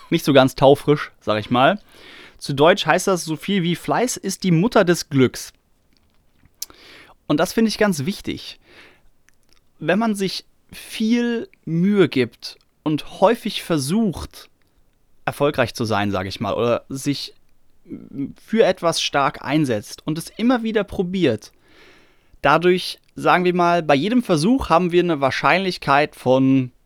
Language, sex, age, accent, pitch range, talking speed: German, male, 30-49, German, 140-190 Hz, 145 wpm